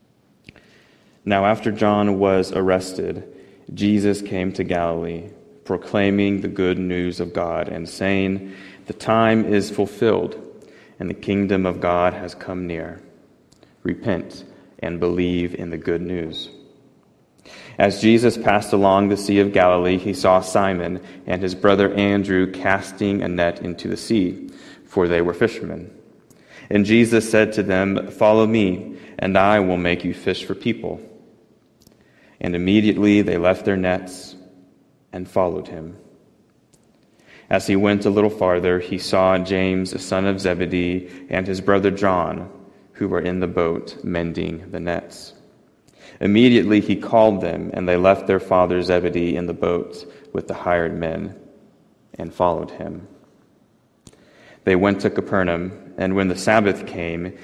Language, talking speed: English, 145 wpm